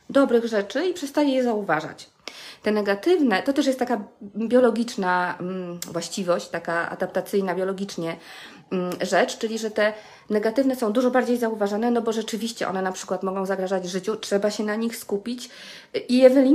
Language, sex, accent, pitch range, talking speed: Polish, female, native, 195-255 Hz, 150 wpm